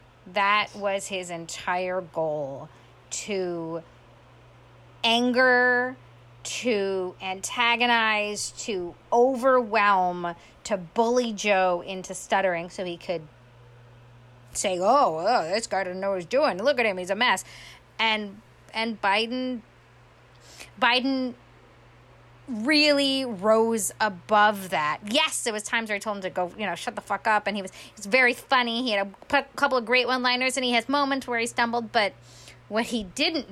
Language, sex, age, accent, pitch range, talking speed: English, female, 30-49, American, 170-225 Hz, 155 wpm